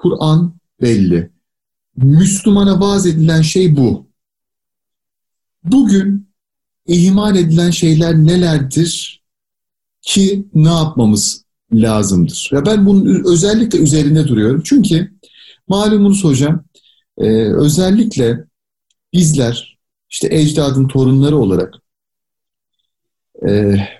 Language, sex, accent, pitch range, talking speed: Turkish, male, native, 140-195 Hz, 85 wpm